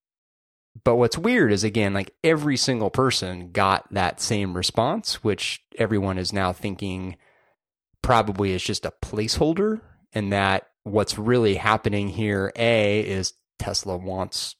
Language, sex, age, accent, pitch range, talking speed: English, male, 30-49, American, 95-110 Hz, 135 wpm